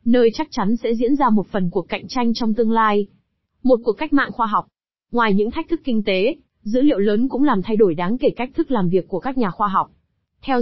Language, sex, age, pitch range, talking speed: Vietnamese, female, 20-39, 205-250 Hz, 255 wpm